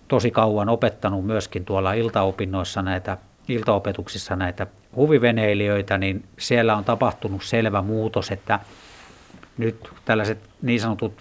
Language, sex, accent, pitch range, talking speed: Finnish, male, native, 100-115 Hz, 110 wpm